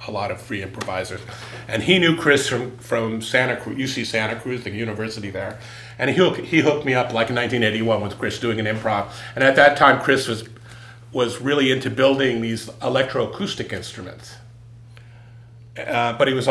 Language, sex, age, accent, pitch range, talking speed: English, male, 40-59, American, 115-130 Hz, 185 wpm